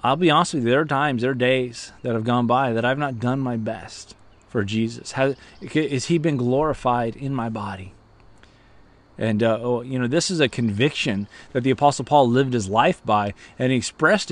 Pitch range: 125-175 Hz